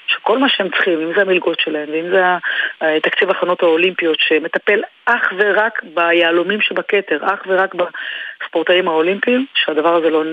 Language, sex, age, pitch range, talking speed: Hebrew, female, 30-49, 165-195 Hz, 145 wpm